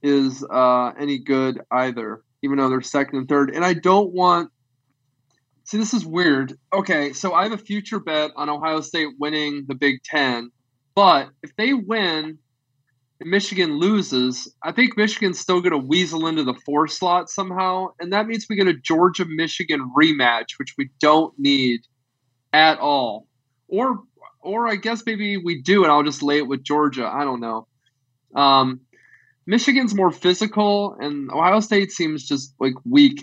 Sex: male